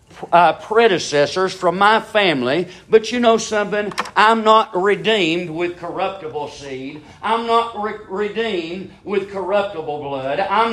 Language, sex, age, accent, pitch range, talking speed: English, male, 50-69, American, 150-215 Hz, 125 wpm